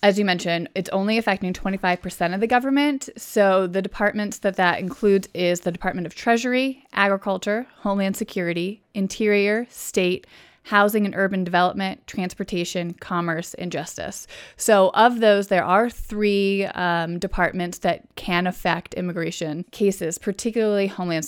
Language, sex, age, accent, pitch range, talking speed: English, female, 30-49, American, 175-215 Hz, 140 wpm